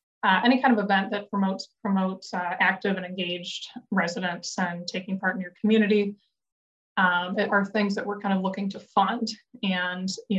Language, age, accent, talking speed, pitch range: English, 20-39, American, 180 wpm, 190-210 Hz